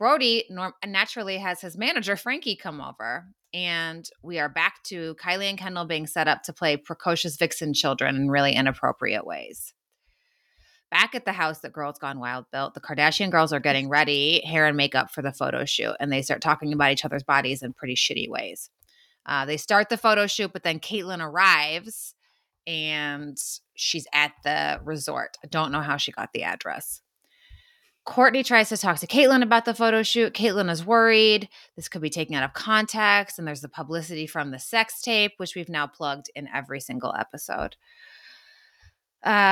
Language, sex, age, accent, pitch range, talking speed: English, female, 20-39, American, 145-200 Hz, 185 wpm